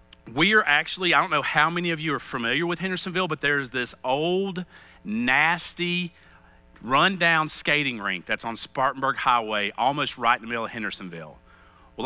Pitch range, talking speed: 120-180 Hz, 170 wpm